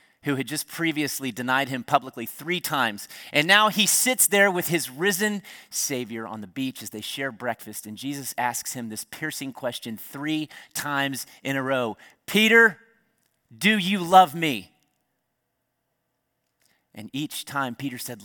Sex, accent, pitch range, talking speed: male, American, 130-190 Hz, 155 wpm